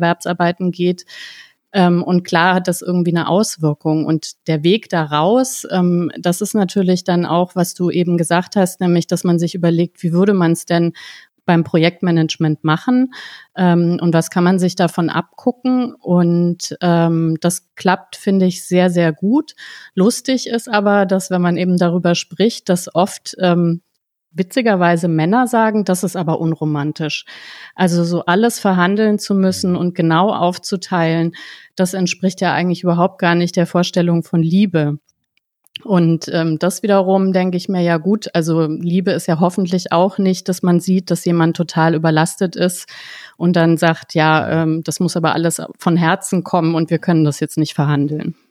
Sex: female